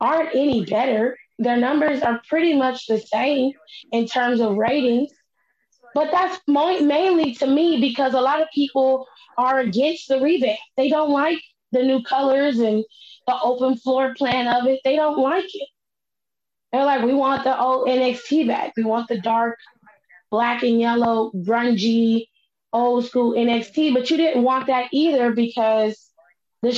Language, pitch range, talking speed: English, 225-275 Hz, 160 wpm